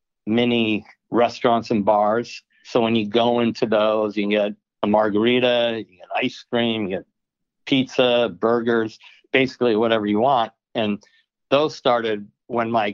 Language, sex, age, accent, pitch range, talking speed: English, male, 60-79, American, 105-120 Hz, 150 wpm